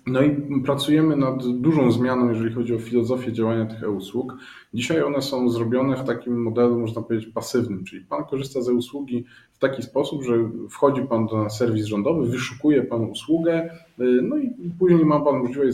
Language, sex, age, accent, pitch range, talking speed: Polish, male, 20-39, native, 120-150 Hz, 175 wpm